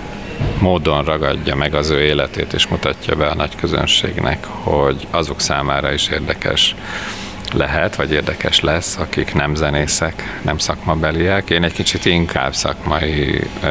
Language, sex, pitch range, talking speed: Hungarian, male, 75-90 Hz, 135 wpm